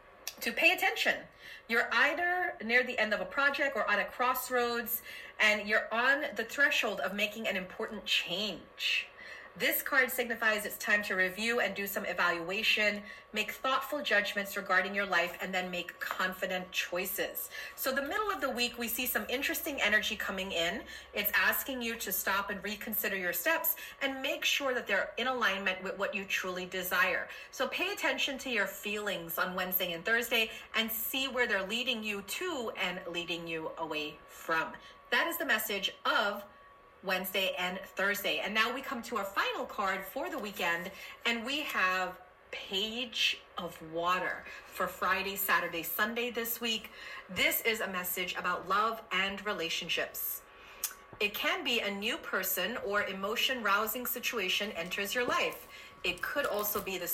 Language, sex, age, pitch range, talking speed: English, female, 30-49, 185-250 Hz, 170 wpm